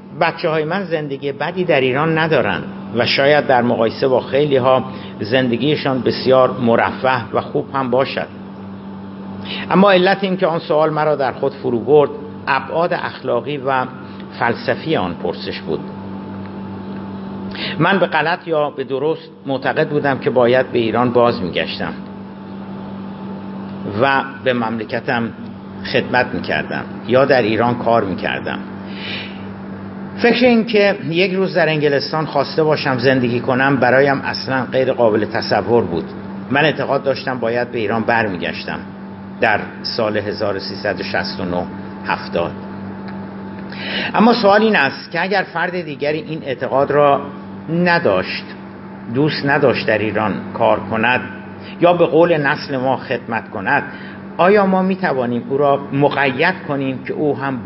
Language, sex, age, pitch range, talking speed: Persian, male, 50-69, 105-155 Hz, 135 wpm